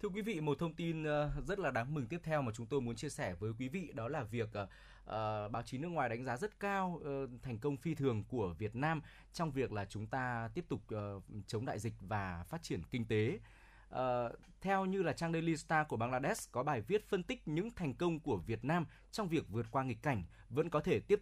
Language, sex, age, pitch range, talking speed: Vietnamese, male, 20-39, 115-165 Hz, 235 wpm